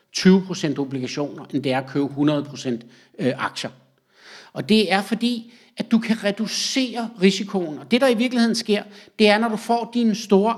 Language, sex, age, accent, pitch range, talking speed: Danish, male, 60-79, native, 160-215 Hz, 170 wpm